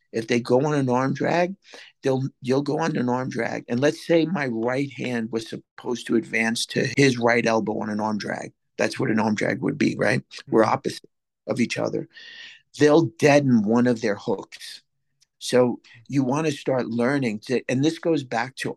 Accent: American